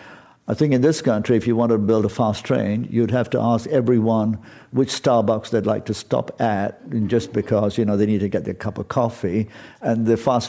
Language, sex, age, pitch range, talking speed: English, male, 60-79, 105-125 Hz, 235 wpm